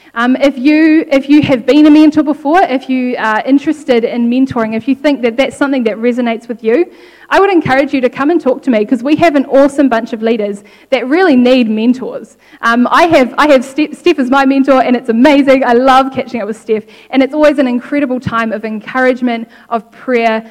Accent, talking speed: Australian, 225 wpm